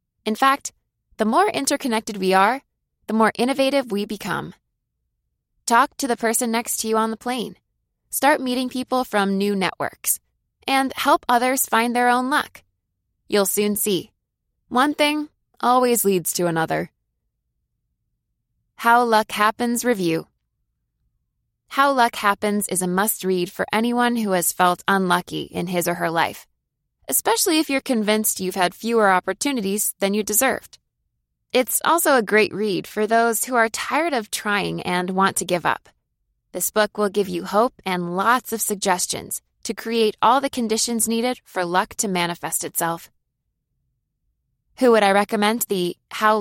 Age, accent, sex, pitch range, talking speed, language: 20-39, American, female, 190-245 Hz, 155 wpm, English